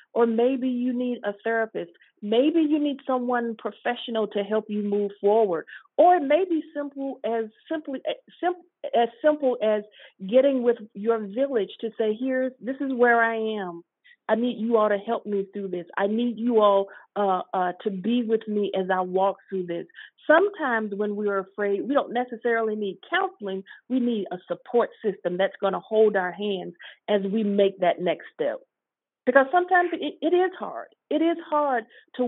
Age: 50-69